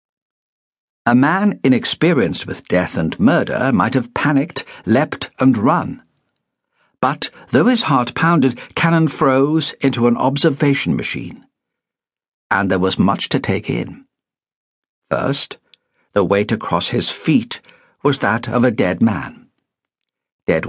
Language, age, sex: English, 60-79, male